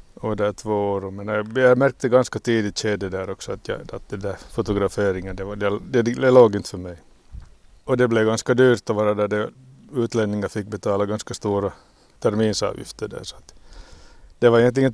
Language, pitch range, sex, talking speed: Swedish, 95-120 Hz, male, 140 wpm